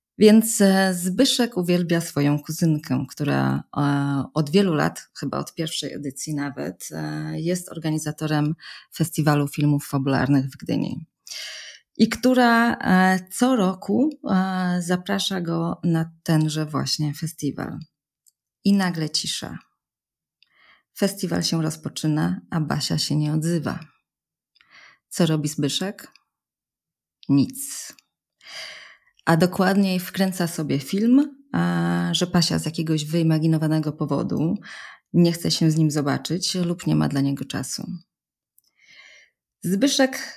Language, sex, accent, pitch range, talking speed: Polish, female, native, 150-190 Hz, 105 wpm